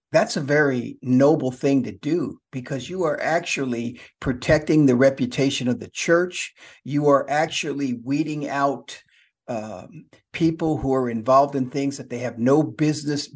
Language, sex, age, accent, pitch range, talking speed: English, male, 50-69, American, 135-170 Hz, 155 wpm